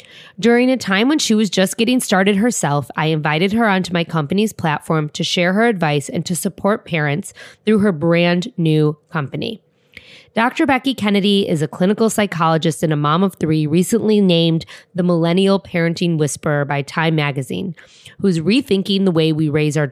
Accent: American